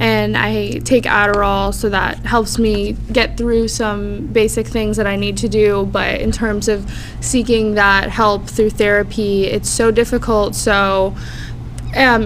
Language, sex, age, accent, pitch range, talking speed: English, female, 20-39, American, 195-230 Hz, 155 wpm